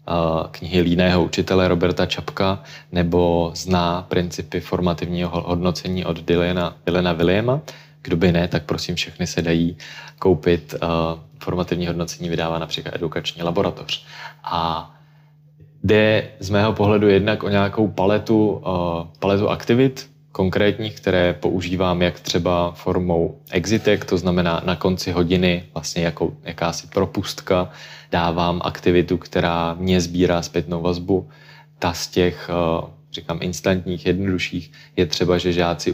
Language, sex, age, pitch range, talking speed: Czech, male, 20-39, 85-95 Hz, 125 wpm